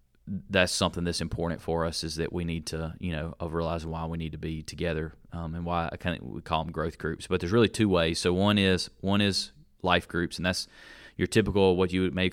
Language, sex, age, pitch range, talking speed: English, male, 30-49, 85-95 Hz, 250 wpm